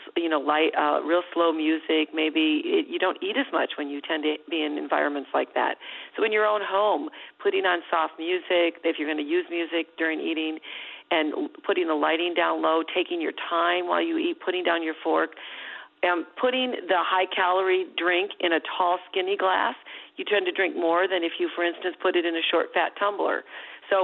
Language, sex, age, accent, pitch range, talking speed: English, female, 40-59, American, 160-205 Hz, 205 wpm